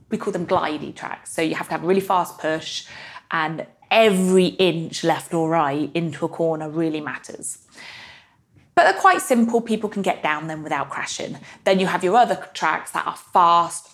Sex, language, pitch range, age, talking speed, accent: female, English, 170-215 Hz, 30-49, 195 wpm, British